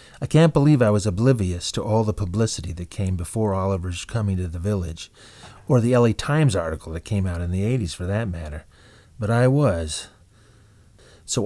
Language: English